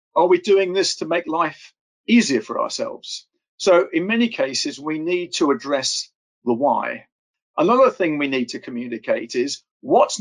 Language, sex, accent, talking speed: English, male, British, 165 wpm